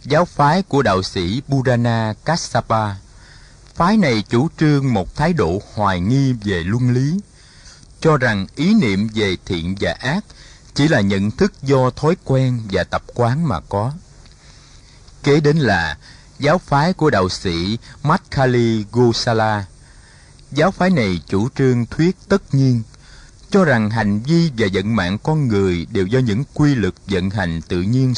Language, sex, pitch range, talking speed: Vietnamese, male, 100-145 Hz, 160 wpm